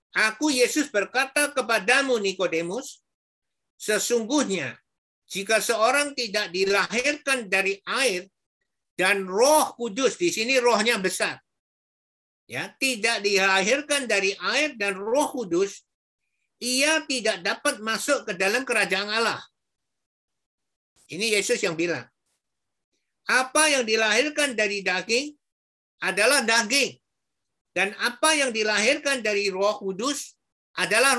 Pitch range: 205-280 Hz